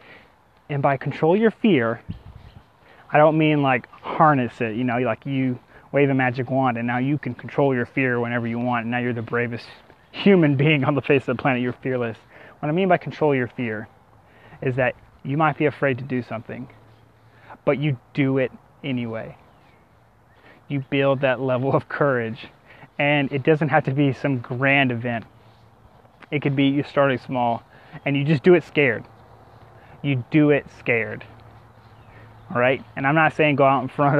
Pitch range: 120-145 Hz